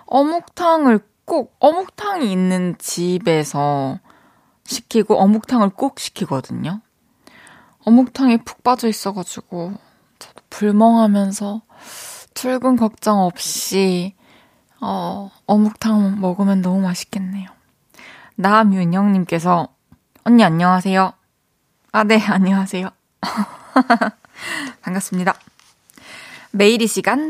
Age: 20-39